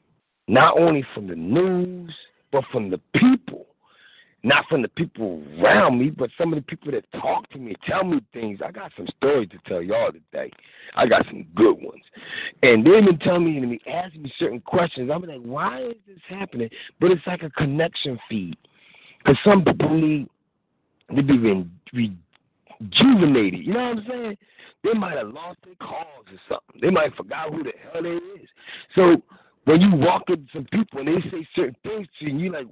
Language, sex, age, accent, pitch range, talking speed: English, male, 50-69, American, 150-215 Hz, 200 wpm